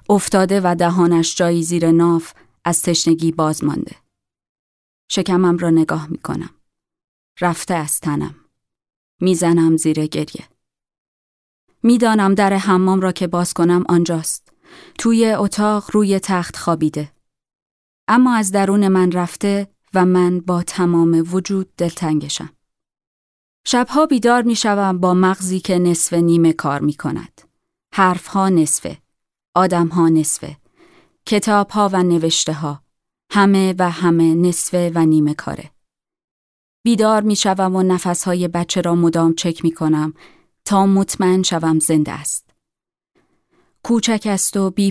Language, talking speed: Persian, 125 wpm